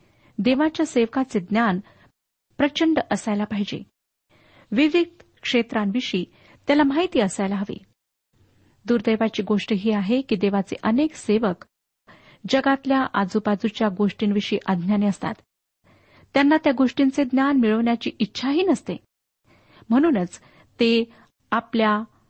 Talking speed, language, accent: 95 wpm, Marathi, native